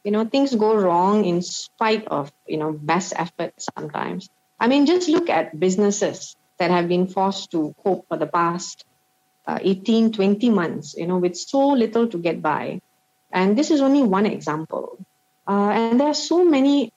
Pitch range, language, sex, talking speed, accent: 170-225 Hz, English, female, 185 wpm, Indian